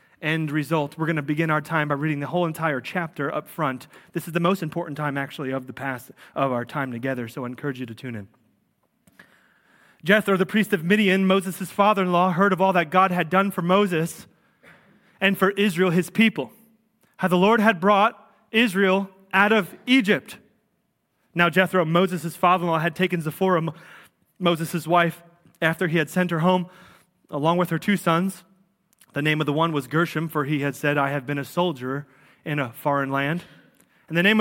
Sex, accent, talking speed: male, American, 190 wpm